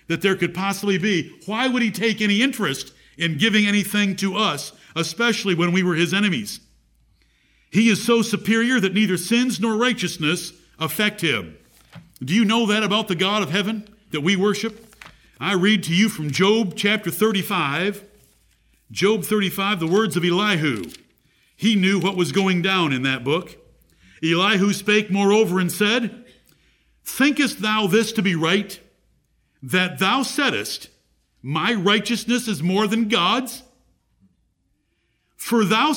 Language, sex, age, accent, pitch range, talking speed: English, male, 50-69, American, 170-220 Hz, 150 wpm